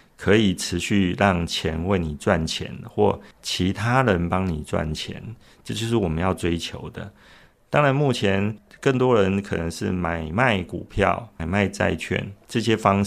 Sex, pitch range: male, 85-105 Hz